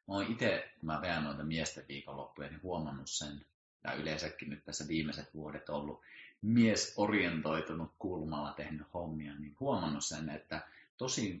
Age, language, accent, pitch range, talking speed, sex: 30-49, Finnish, native, 75-85 Hz, 155 wpm, male